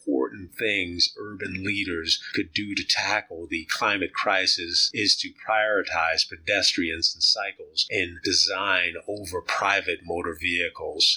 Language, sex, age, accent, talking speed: English, male, 30-49, American, 130 wpm